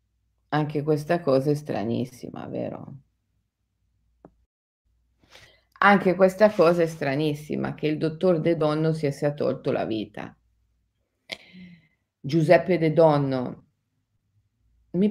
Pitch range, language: 115-170 Hz, Italian